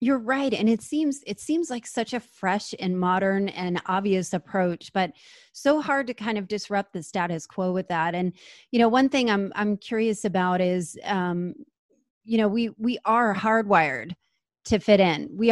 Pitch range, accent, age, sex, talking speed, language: 185-230 Hz, American, 30-49, female, 190 wpm, English